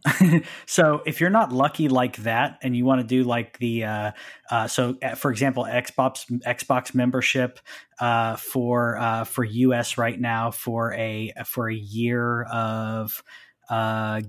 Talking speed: 155 wpm